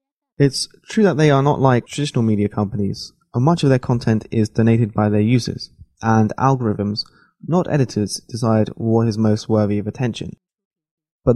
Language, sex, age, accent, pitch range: Chinese, male, 20-39, British, 105-130 Hz